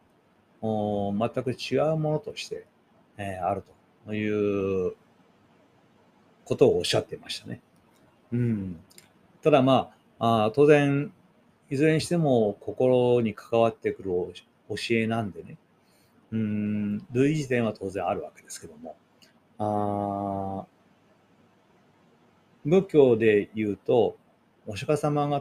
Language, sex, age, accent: Japanese, male, 40-59, native